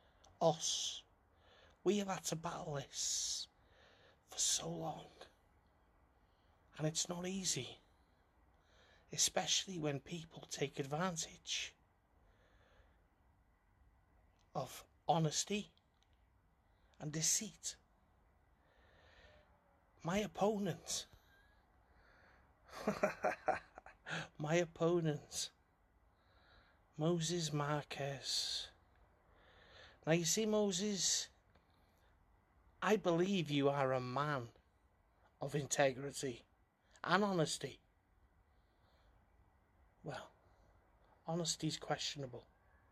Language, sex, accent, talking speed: English, male, British, 65 wpm